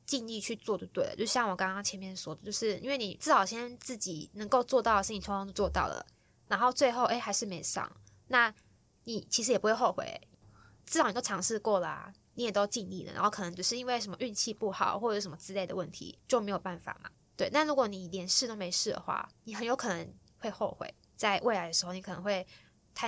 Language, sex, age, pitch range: Chinese, female, 20-39, 190-230 Hz